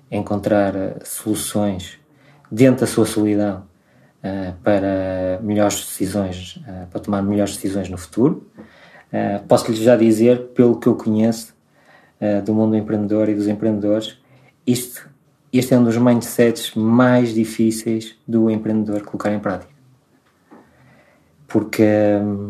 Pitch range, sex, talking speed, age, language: 105-120 Hz, male, 125 wpm, 20-39, Portuguese